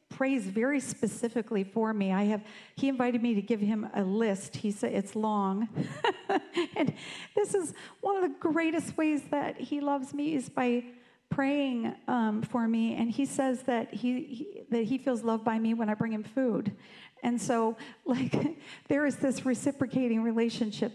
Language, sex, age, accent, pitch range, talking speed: English, female, 40-59, American, 215-255 Hz, 180 wpm